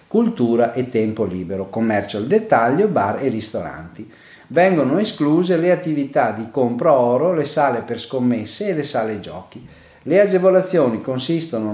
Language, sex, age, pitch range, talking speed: Italian, male, 40-59, 115-175 Hz, 145 wpm